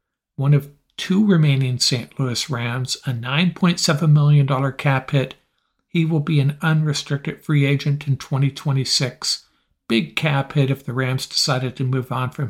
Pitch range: 130-155 Hz